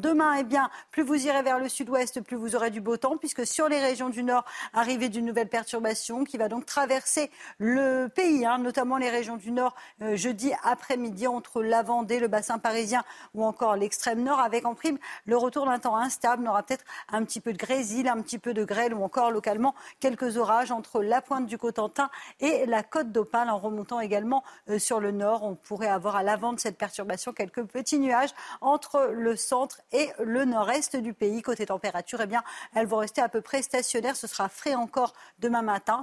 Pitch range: 220-260 Hz